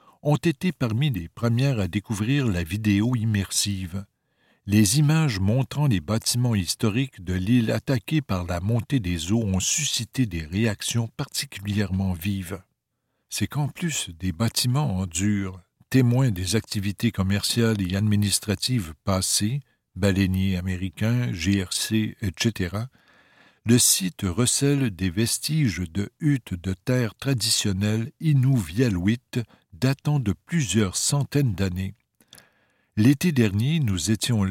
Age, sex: 60-79, male